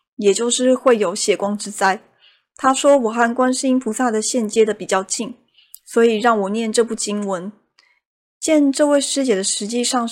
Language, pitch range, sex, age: Chinese, 205-250 Hz, female, 20-39